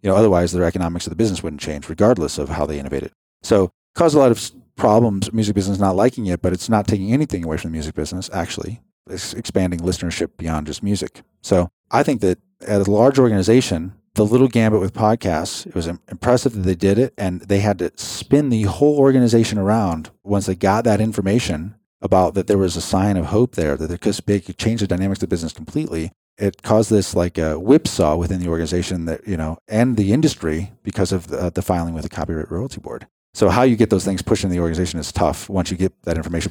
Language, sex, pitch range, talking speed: English, male, 90-115 Hz, 230 wpm